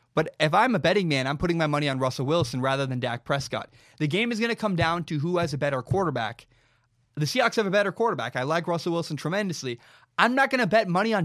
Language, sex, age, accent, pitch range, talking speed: English, male, 20-39, American, 130-170 Hz, 255 wpm